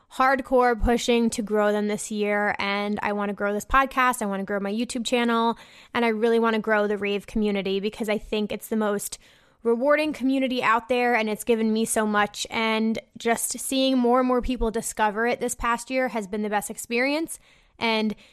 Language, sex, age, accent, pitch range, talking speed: English, female, 20-39, American, 215-245 Hz, 210 wpm